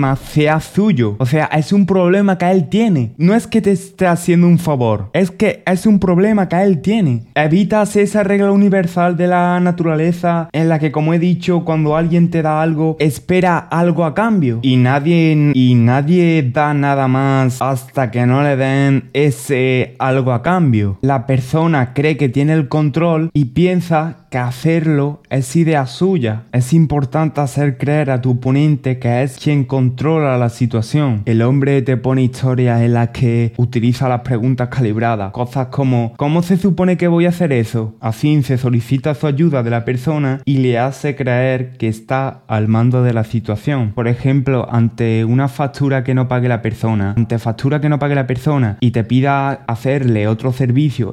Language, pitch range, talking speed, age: Spanish, 125-165 Hz, 180 wpm, 20-39